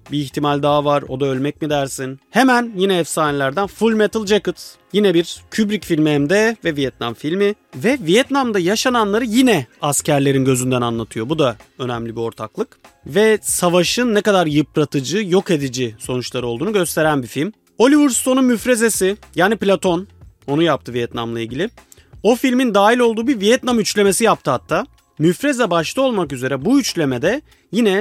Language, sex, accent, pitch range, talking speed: Turkish, male, native, 135-205 Hz, 155 wpm